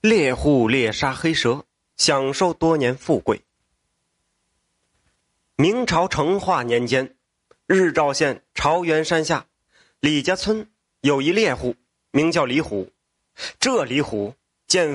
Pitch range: 140-210 Hz